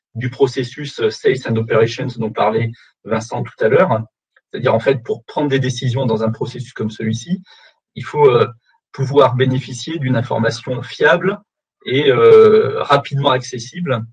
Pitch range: 115-145 Hz